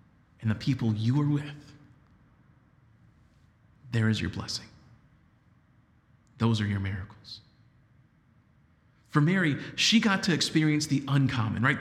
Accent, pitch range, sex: American, 115-155 Hz, male